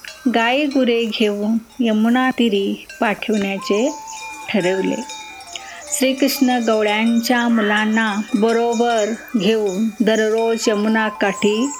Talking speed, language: 65 wpm, Marathi